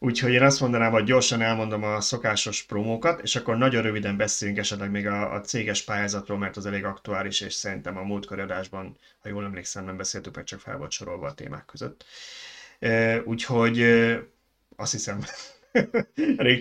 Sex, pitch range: male, 105-120 Hz